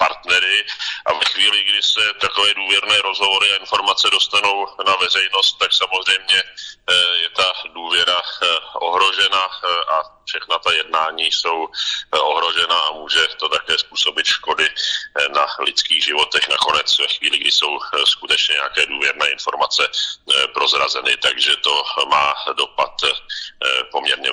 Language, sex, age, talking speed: Czech, male, 40-59, 120 wpm